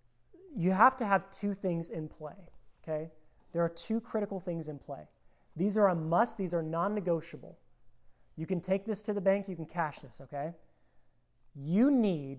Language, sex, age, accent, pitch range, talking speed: English, male, 30-49, American, 155-195 Hz, 180 wpm